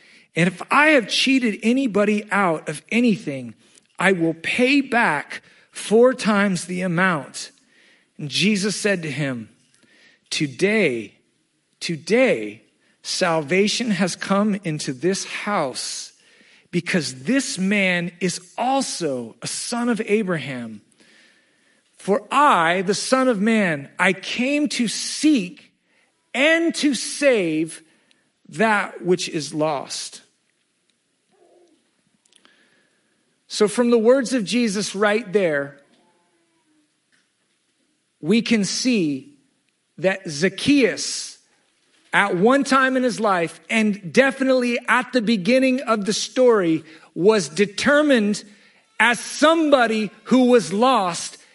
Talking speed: 105 wpm